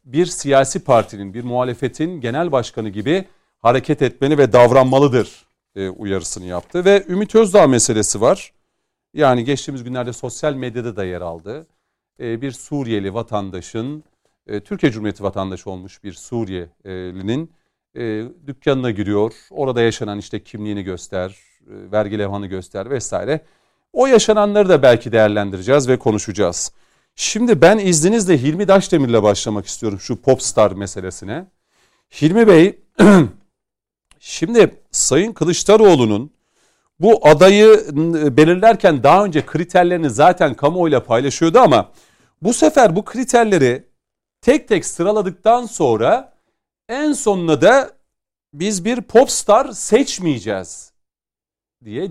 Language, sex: Turkish, male